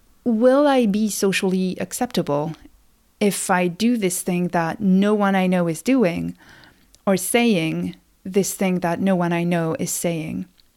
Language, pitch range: English, 180-220 Hz